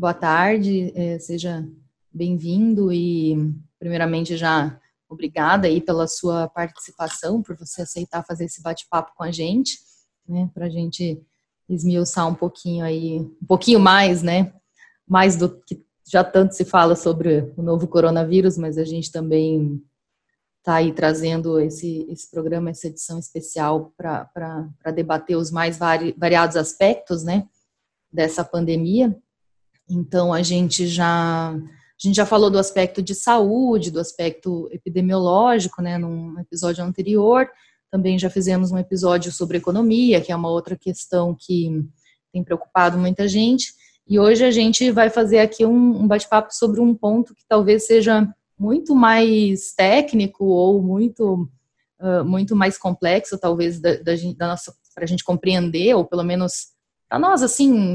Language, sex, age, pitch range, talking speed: Portuguese, female, 20-39, 165-195 Hz, 145 wpm